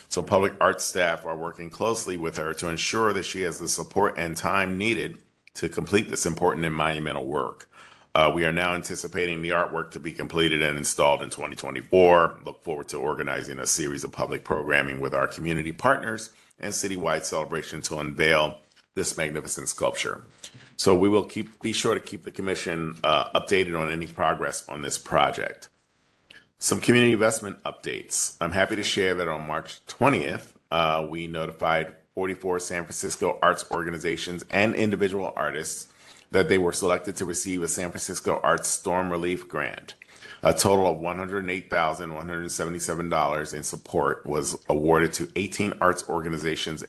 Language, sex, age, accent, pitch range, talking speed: English, male, 40-59, American, 80-90 Hz, 165 wpm